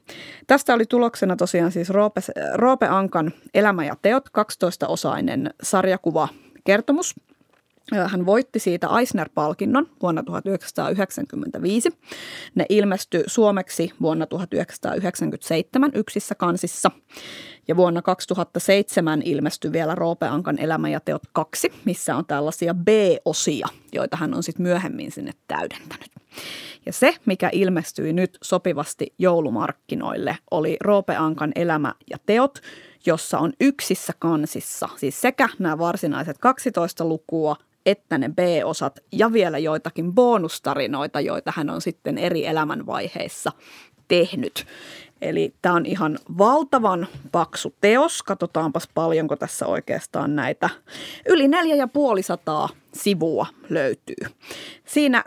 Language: Finnish